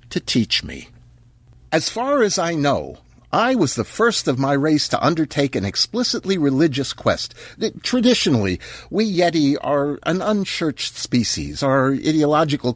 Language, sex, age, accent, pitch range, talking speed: English, male, 60-79, American, 125-185 Hz, 140 wpm